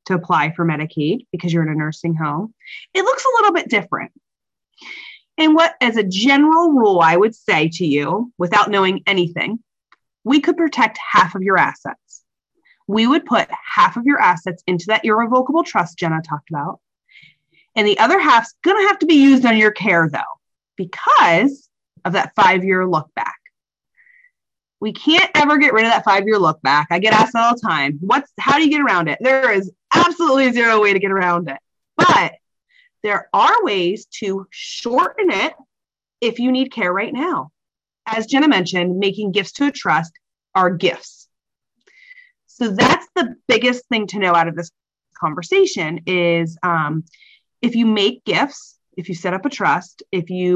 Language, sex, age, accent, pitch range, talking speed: English, female, 30-49, American, 180-285 Hz, 180 wpm